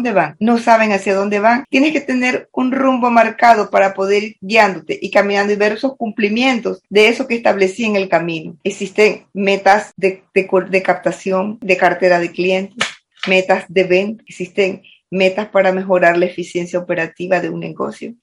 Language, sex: English, female